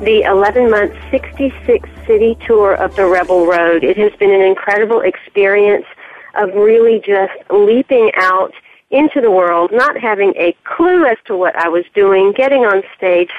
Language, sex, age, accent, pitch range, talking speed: English, female, 40-59, American, 185-220 Hz, 155 wpm